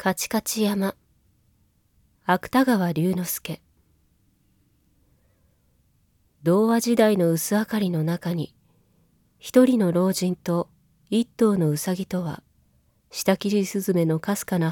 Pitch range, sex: 155-195 Hz, female